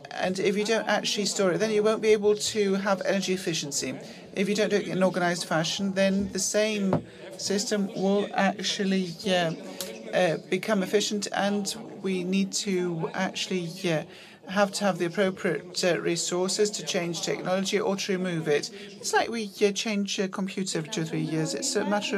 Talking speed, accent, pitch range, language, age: 185 wpm, British, 185-210 Hz, Greek, 40-59